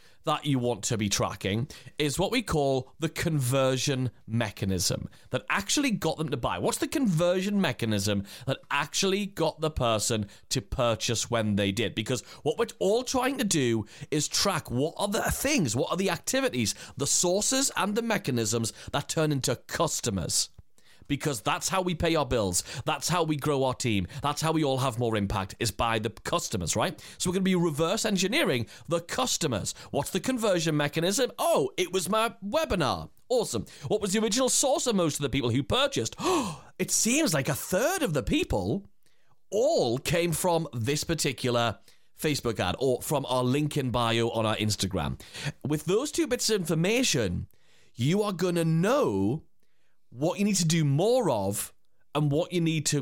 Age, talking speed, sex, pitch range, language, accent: 30-49, 185 wpm, male, 120-180 Hz, English, British